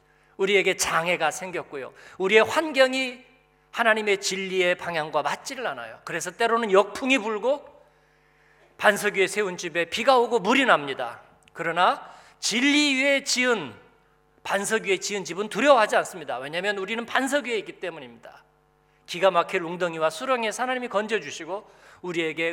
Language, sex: Korean, male